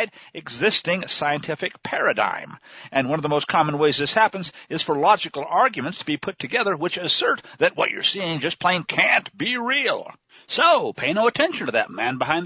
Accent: American